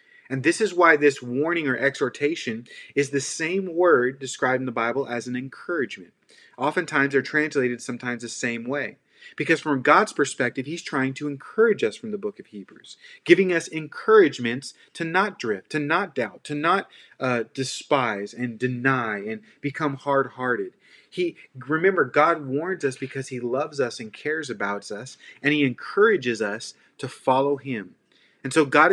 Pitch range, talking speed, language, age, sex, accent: 135-200 Hz, 170 wpm, English, 30-49, male, American